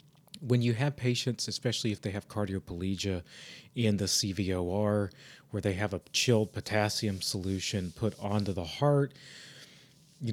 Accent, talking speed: American, 140 wpm